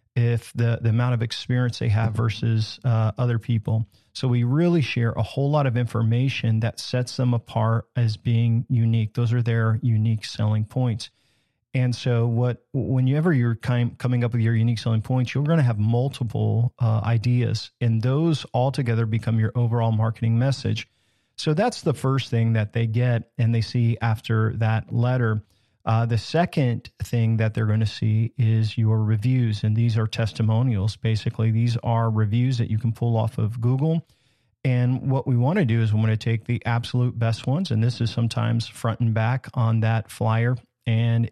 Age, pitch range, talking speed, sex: 40-59, 110-125 Hz, 185 wpm, male